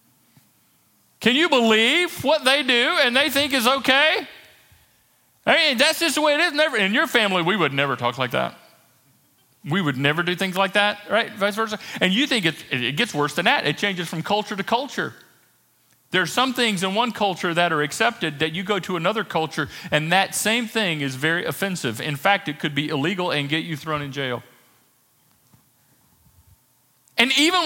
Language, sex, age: English, male, 40-59